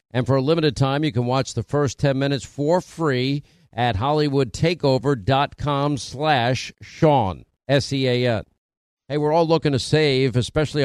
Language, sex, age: English, male, 50-69